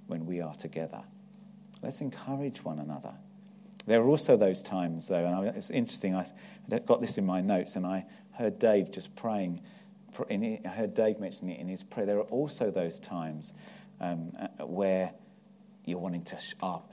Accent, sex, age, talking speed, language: British, male, 40-59, 170 wpm, English